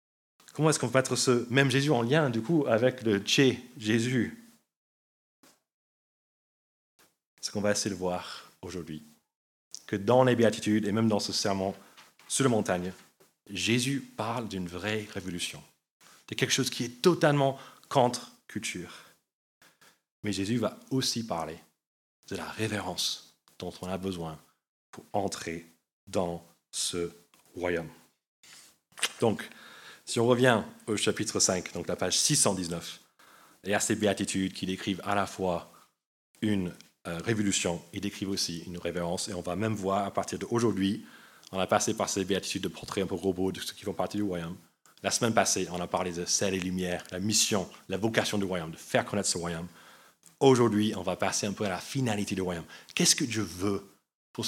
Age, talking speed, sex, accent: 30-49, 175 wpm, male, French